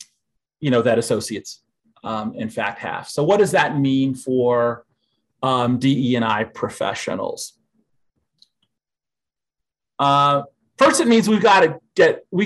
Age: 40-59